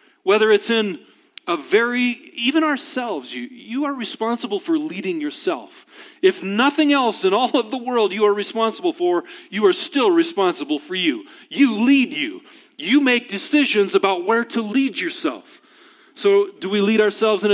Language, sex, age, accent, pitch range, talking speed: English, male, 40-59, American, 215-335 Hz, 170 wpm